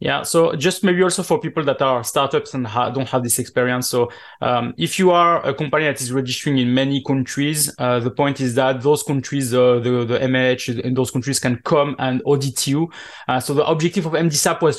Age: 20-39